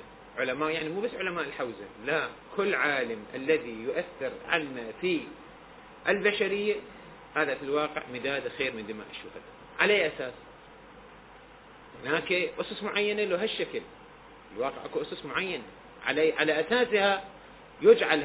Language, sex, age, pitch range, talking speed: Arabic, male, 40-59, 150-210 Hz, 120 wpm